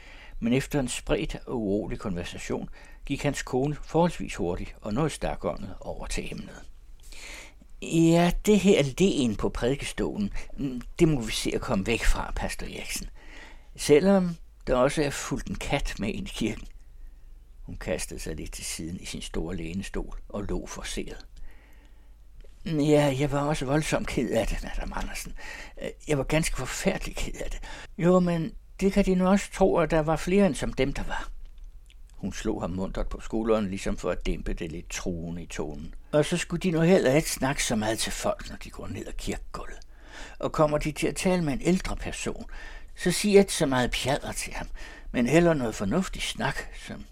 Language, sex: Danish, male